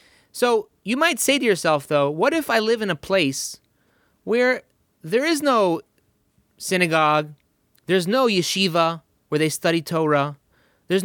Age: 30-49